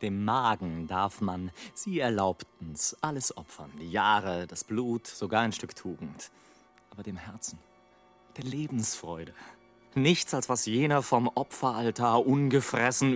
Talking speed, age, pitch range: 130 wpm, 30-49, 110-165 Hz